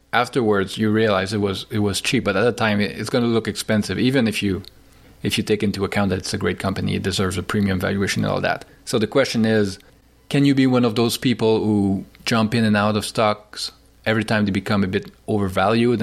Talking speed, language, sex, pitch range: 235 wpm, English, male, 105-120 Hz